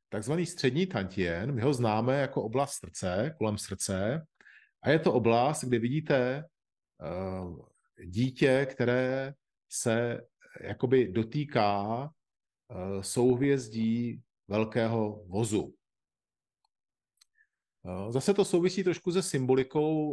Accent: native